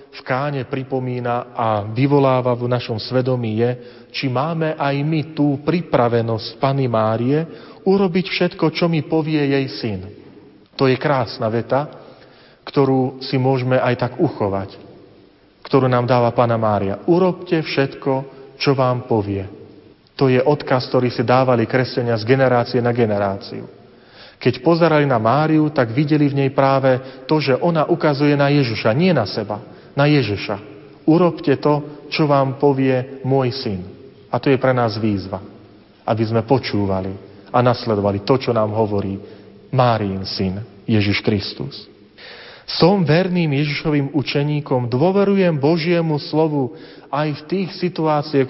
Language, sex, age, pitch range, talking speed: Slovak, male, 40-59, 120-150 Hz, 140 wpm